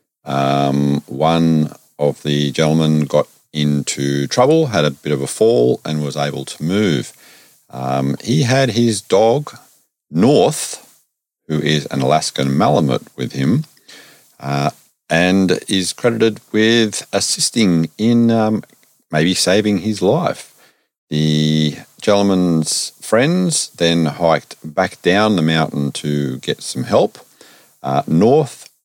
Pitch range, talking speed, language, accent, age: 75-110 Hz, 125 wpm, English, Australian, 50-69